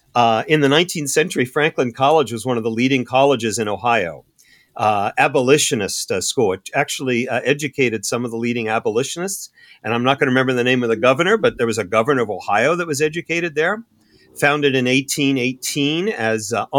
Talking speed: 190 wpm